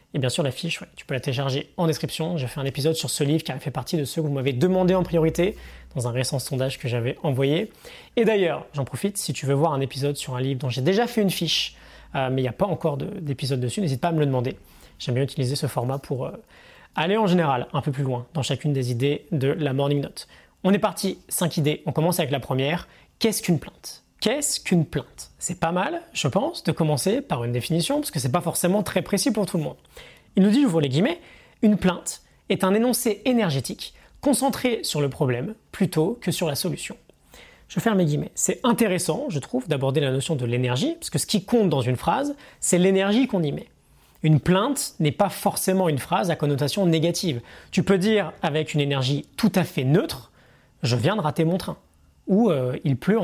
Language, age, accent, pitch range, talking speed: French, 20-39, French, 140-190 Hz, 235 wpm